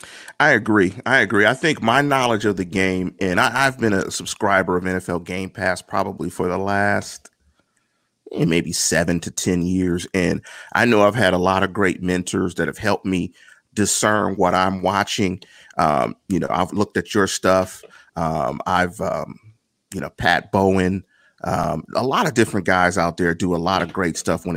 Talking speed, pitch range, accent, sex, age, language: 190 wpm, 90-105 Hz, American, male, 30-49, English